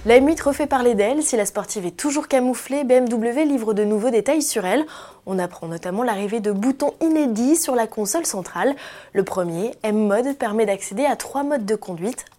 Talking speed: 195 wpm